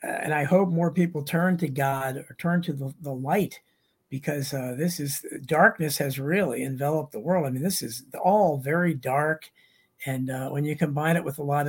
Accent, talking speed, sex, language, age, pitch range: American, 205 wpm, male, English, 50-69, 145-180 Hz